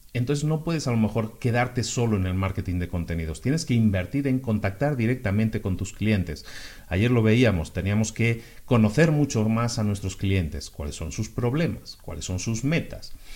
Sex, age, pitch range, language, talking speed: male, 40-59, 95-125 Hz, Spanish, 185 wpm